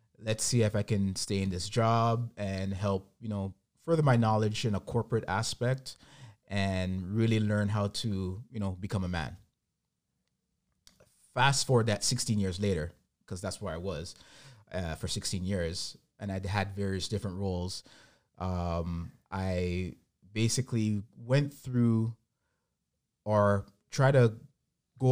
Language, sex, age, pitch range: English, male, 30-49, 95-120 Hz